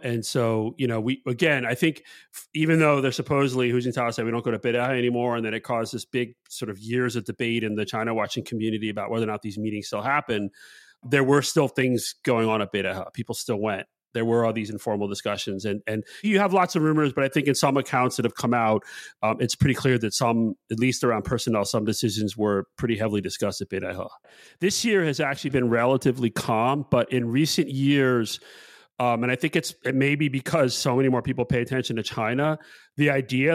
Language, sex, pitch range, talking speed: English, male, 115-140 Hz, 225 wpm